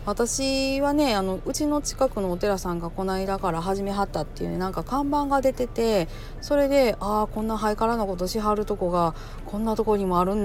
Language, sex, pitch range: Japanese, female, 160-225 Hz